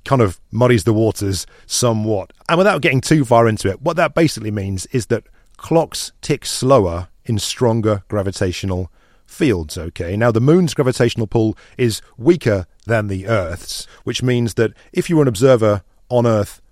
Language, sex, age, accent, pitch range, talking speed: English, male, 40-59, British, 100-130 Hz, 170 wpm